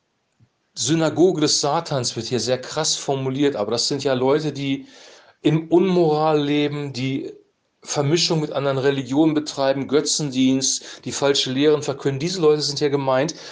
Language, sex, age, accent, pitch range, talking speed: German, male, 40-59, German, 130-155 Hz, 145 wpm